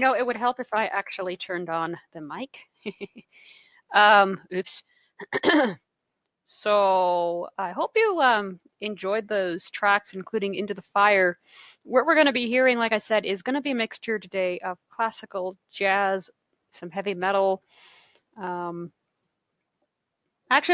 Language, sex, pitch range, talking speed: English, female, 195-255 Hz, 145 wpm